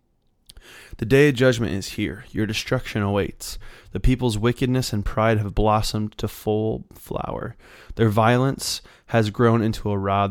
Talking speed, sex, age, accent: 150 wpm, male, 20-39, American